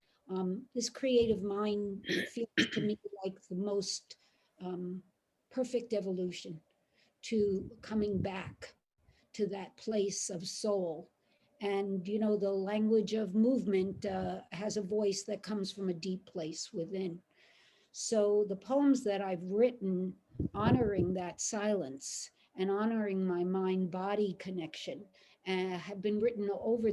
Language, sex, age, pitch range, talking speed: English, female, 60-79, 185-215 Hz, 130 wpm